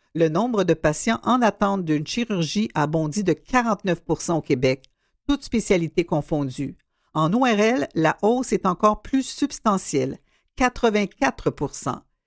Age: 50-69